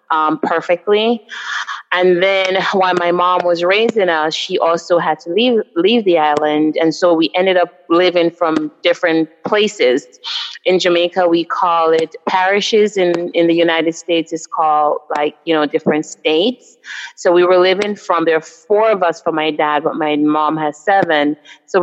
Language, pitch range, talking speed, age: English, 160-180 Hz, 175 wpm, 30-49